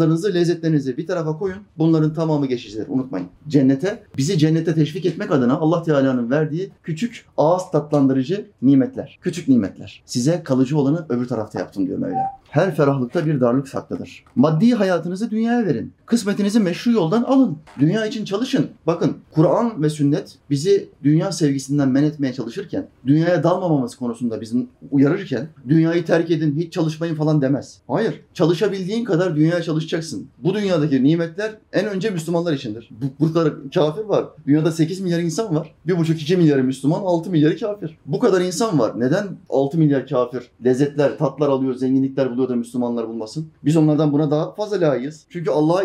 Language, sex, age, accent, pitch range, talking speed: Turkish, male, 30-49, native, 135-175 Hz, 160 wpm